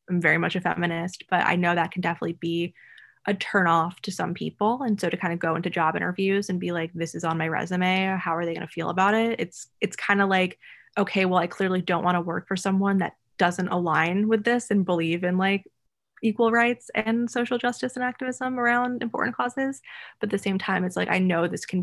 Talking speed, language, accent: 235 wpm, English, American